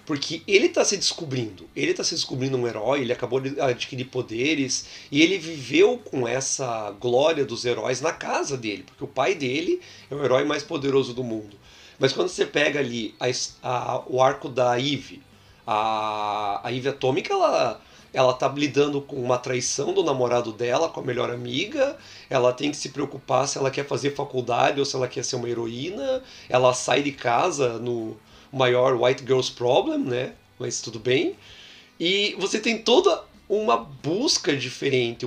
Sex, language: male, Portuguese